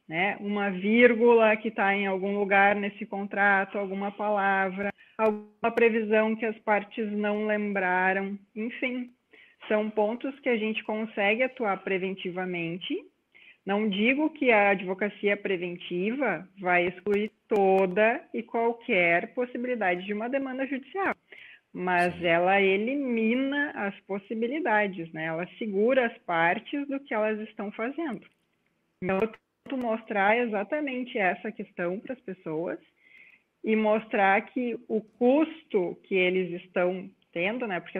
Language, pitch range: Portuguese, 195-240 Hz